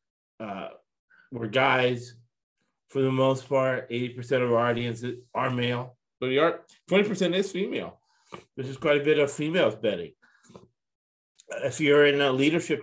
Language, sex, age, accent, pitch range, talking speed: English, male, 30-49, American, 110-140 Hz, 150 wpm